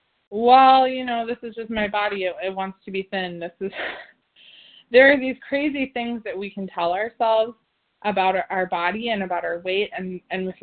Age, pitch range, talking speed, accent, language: 20-39, 185-230 Hz, 210 wpm, American, English